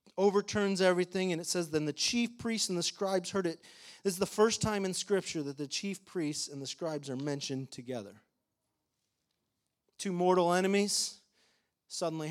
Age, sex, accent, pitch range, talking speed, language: 40-59, male, American, 145-190 Hz, 170 wpm, English